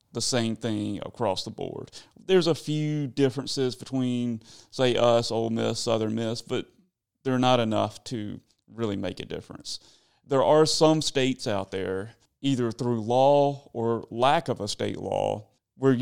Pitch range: 110-125 Hz